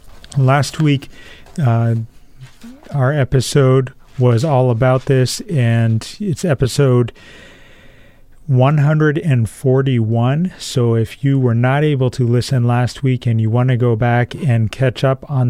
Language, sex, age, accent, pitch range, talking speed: English, male, 40-59, American, 115-135 Hz, 130 wpm